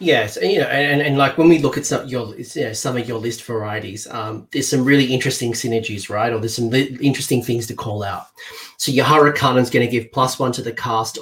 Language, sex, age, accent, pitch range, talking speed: English, male, 30-49, Australian, 115-130 Hz, 255 wpm